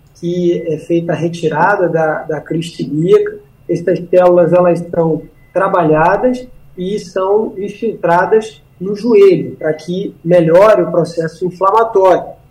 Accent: Brazilian